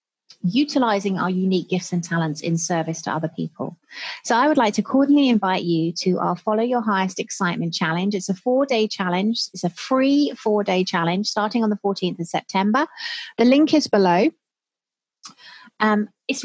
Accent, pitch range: British, 175-235 Hz